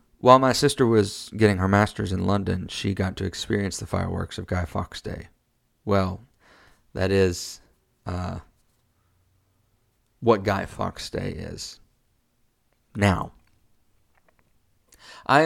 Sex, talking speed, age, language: male, 115 wpm, 30-49, English